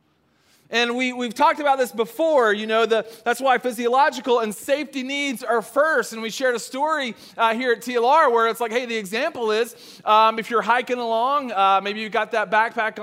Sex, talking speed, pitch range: male, 205 wpm, 225-320 Hz